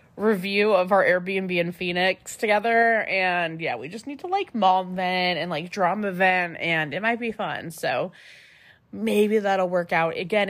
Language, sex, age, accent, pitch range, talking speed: English, female, 20-39, American, 180-225 Hz, 175 wpm